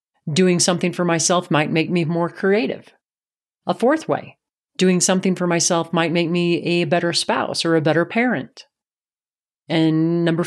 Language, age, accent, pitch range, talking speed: English, 40-59, American, 155-190 Hz, 160 wpm